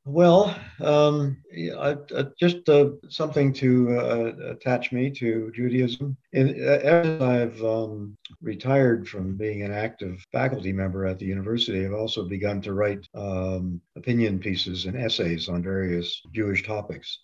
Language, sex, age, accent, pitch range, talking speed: English, male, 50-69, American, 95-125 Hz, 145 wpm